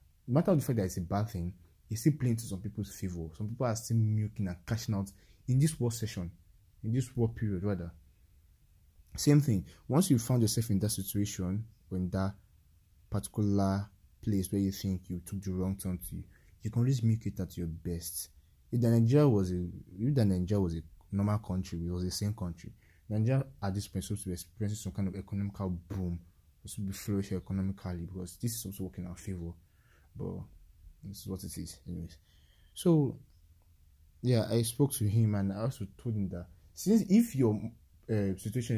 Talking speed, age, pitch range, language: 195 wpm, 20-39, 90-110 Hz, English